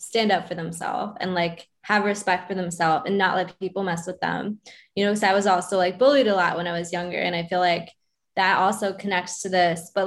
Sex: female